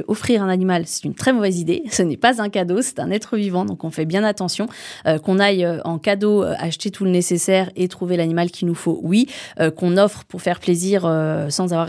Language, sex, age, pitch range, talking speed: French, female, 20-39, 165-205 Hz, 240 wpm